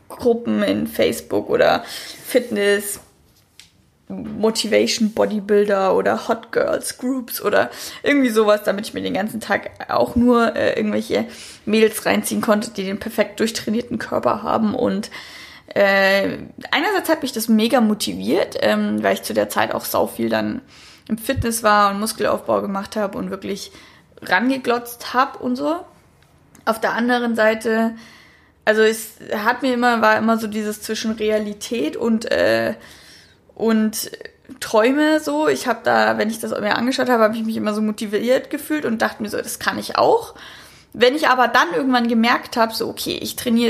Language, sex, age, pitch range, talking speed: German, female, 10-29, 210-245 Hz, 160 wpm